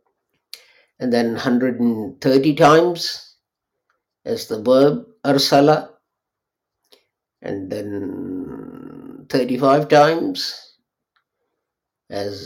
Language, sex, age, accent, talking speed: English, male, 50-69, Indian, 65 wpm